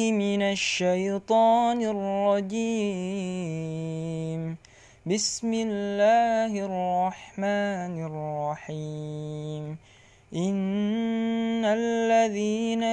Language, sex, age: Indonesian, male, 20-39